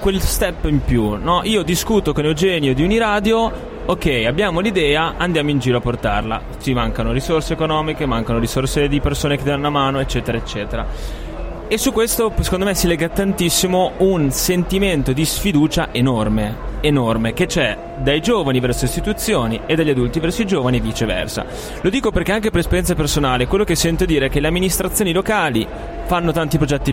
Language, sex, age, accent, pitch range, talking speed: Italian, male, 20-39, native, 125-180 Hz, 180 wpm